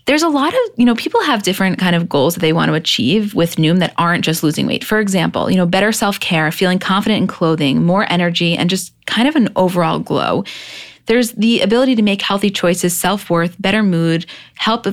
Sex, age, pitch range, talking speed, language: female, 20-39, 170-210 Hz, 215 wpm, English